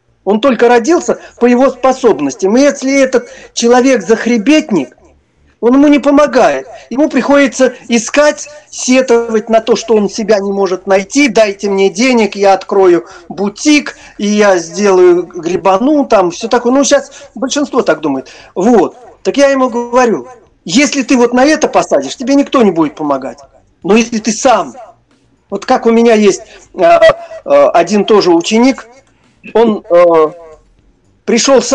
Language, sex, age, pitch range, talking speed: Russian, male, 40-59, 195-265 Hz, 145 wpm